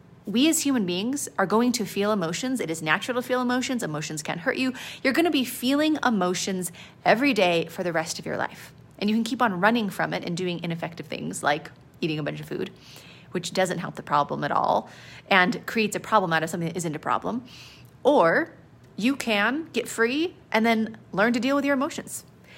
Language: English